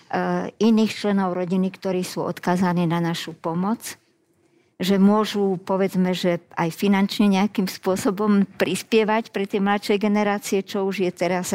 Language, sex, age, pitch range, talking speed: Slovak, male, 50-69, 180-210 Hz, 135 wpm